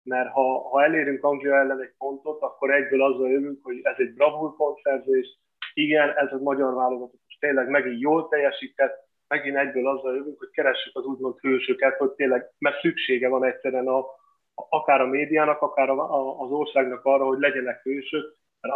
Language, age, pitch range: Hungarian, 30-49, 130-150 Hz